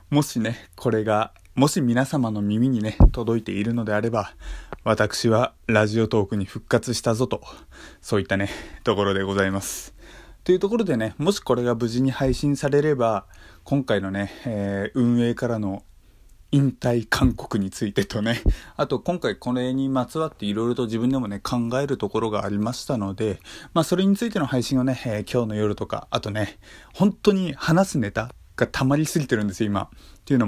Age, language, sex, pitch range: 20-39, Japanese, male, 105-135 Hz